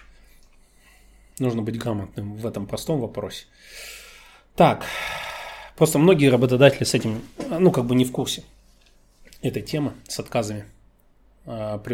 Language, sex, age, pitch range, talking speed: Russian, male, 20-39, 110-130 Hz, 120 wpm